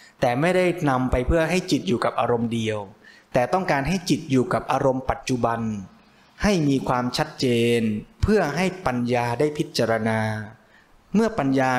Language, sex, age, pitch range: Thai, male, 20-39, 120-160 Hz